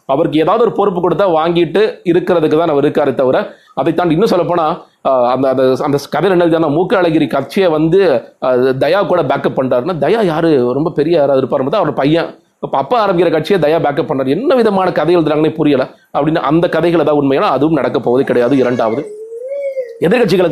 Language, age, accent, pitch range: Tamil, 30-49, native, 145-190 Hz